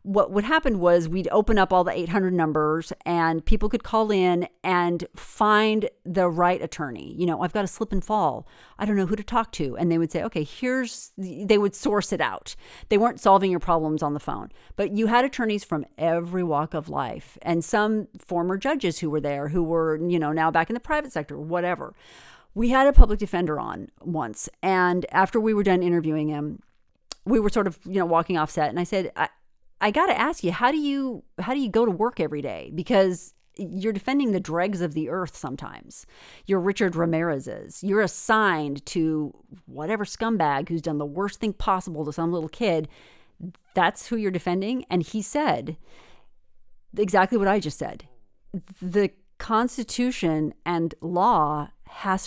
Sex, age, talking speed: female, 40-59, 195 wpm